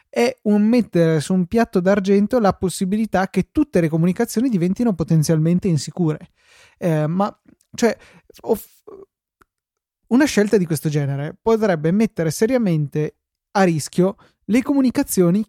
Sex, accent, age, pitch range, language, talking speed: male, native, 20-39, 155-190 Hz, Italian, 110 wpm